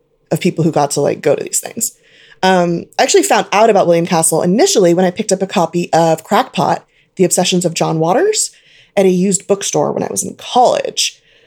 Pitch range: 165-245 Hz